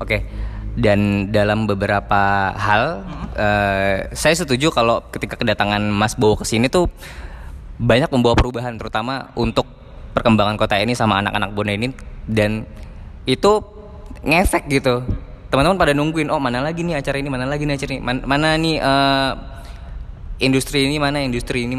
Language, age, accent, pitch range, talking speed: Indonesian, 20-39, native, 100-130 Hz, 155 wpm